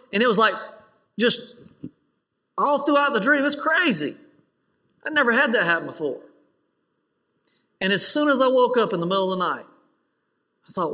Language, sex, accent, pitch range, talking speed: English, male, American, 165-230 Hz, 175 wpm